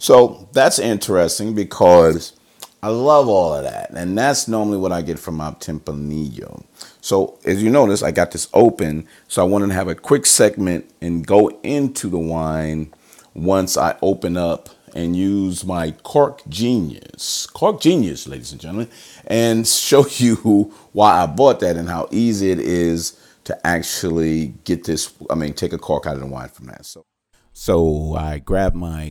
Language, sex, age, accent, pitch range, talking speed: English, male, 40-59, American, 80-110 Hz, 175 wpm